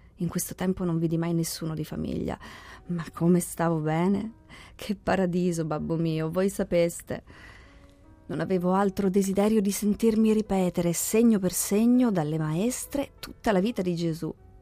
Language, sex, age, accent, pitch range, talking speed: Italian, female, 30-49, native, 155-200 Hz, 150 wpm